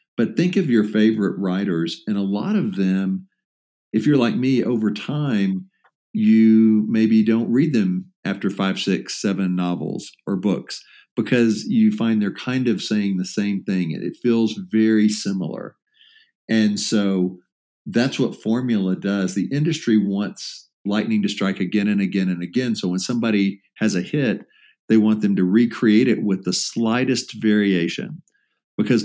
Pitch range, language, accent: 100-120 Hz, English, American